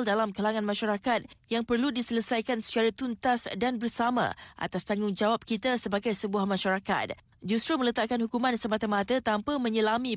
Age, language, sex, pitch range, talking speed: 20-39, Malay, female, 210-245 Hz, 130 wpm